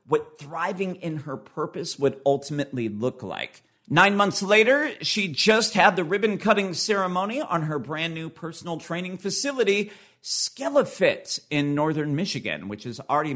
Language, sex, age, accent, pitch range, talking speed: English, male, 40-59, American, 125-185 Hz, 140 wpm